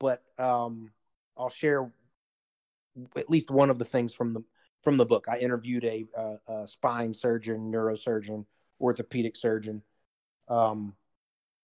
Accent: American